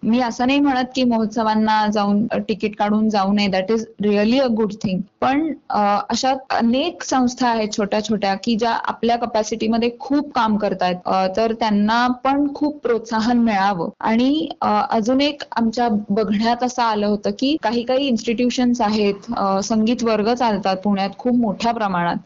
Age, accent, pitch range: 20-39, native, 210-255 Hz